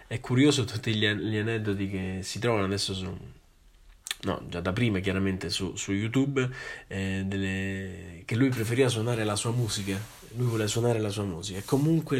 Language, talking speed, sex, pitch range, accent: Italian, 170 wpm, male, 95-115 Hz, native